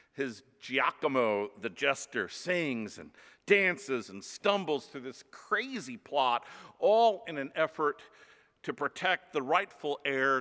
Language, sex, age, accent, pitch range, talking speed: English, male, 50-69, American, 125-195 Hz, 125 wpm